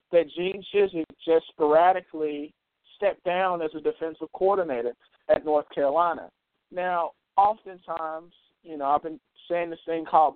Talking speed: 140 wpm